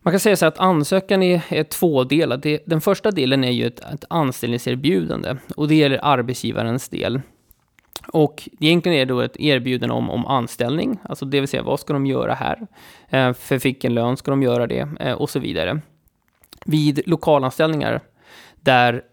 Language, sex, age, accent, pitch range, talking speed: Swedish, male, 20-39, native, 125-155 Hz, 180 wpm